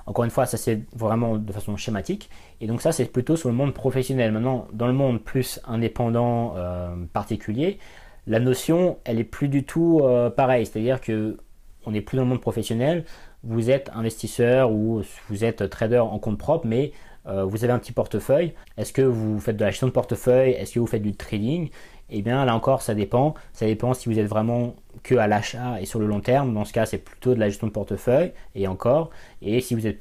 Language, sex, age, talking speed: French, male, 20-39, 220 wpm